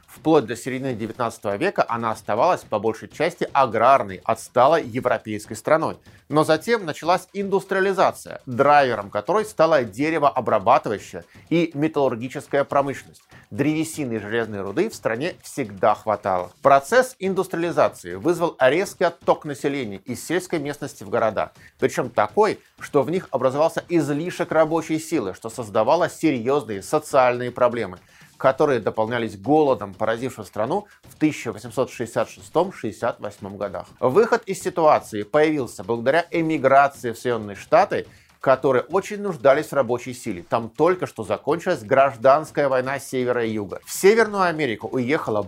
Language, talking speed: Russian, 125 wpm